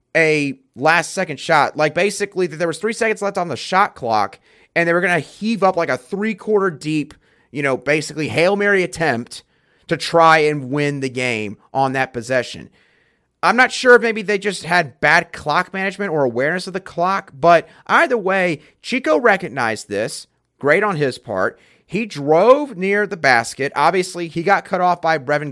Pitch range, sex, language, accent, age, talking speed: 140-195 Hz, male, English, American, 30-49, 190 wpm